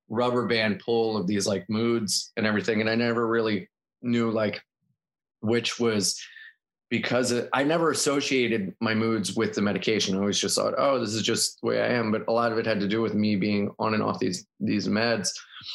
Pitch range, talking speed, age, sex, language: 105-120 Hz, 215 wpm, 20-39, male, English